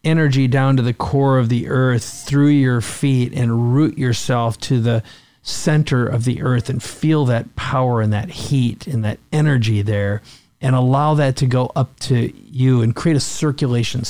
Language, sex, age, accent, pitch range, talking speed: English, male, 50-69, American, 115-135 Hz, 185 wpm